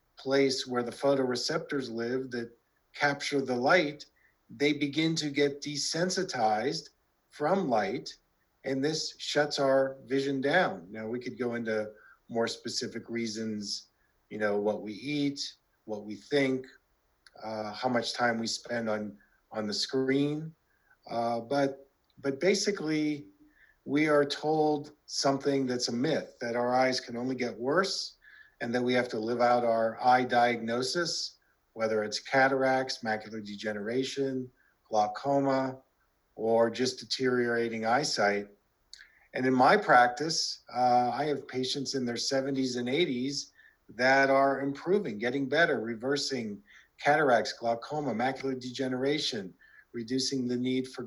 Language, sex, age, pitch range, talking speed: English, male, 40-59, 120-140 Hz, 135 wpm